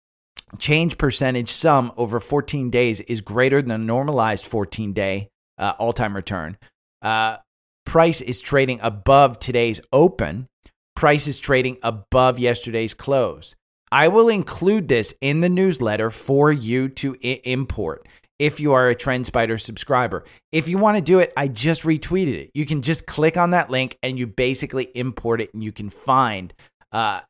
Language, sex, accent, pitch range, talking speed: English, male, American, 110-140 Hz, 155 wpm